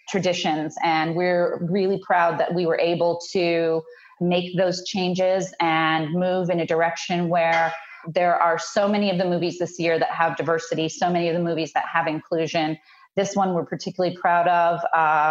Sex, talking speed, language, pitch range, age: female, 180 wpm, English, 165-190 Hz, 30-49